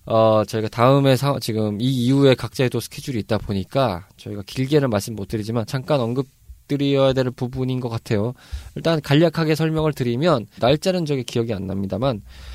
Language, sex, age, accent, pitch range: Korean, male, 20-39, native, 115-155 Hz